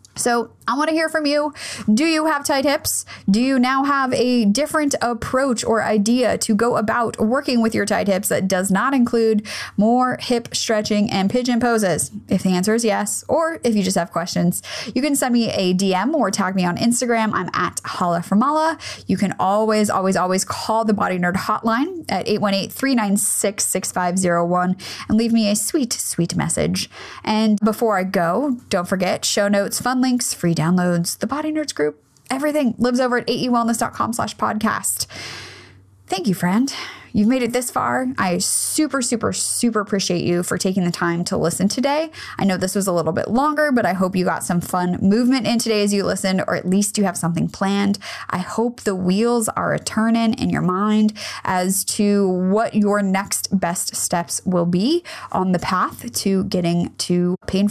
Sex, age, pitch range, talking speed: female, 10-29, 185-245 Hz, 190 wpm